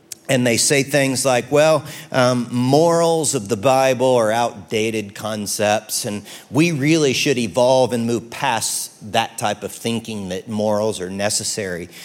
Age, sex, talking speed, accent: 50-69, male, 150 wpm, American